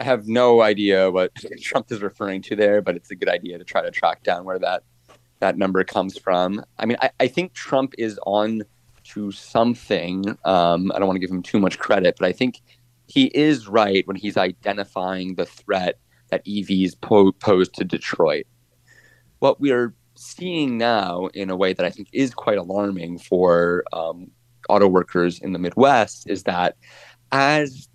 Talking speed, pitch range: 185 wpm, 90-115 Hz